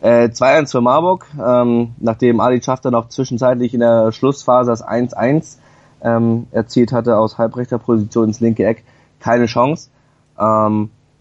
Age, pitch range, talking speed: 20-39, 105-125 Hz, 145 wpm